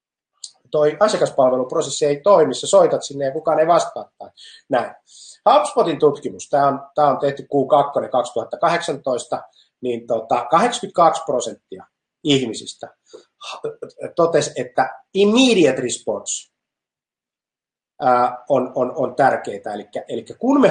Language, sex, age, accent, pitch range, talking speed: Finnish, male, 30-49, native, 130-175 Hz, 100 wpm